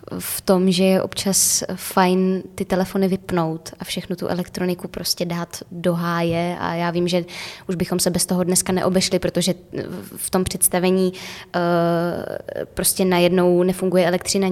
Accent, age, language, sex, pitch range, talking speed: native, 20-39, Czech, female, 175-185 Hz, 150 wpm